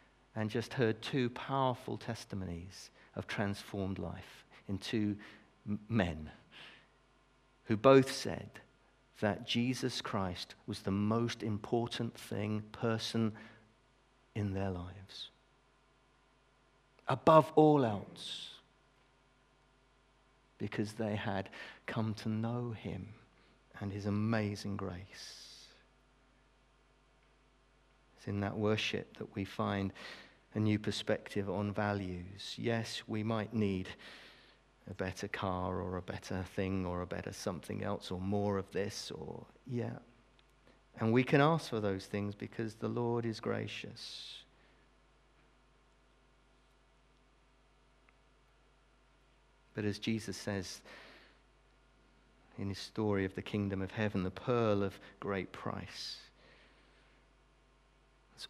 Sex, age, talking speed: male, 50-69, 110 wpm